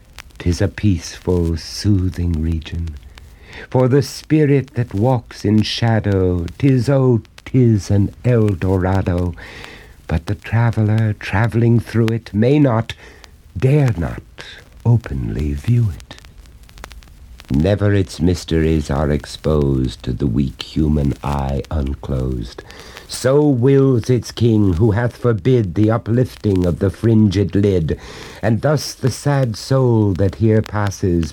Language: English